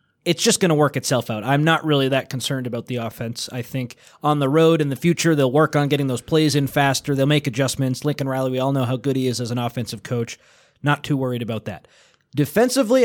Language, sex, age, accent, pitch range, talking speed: English, male, 20-39, American, 130-160 Hz, 245 wpm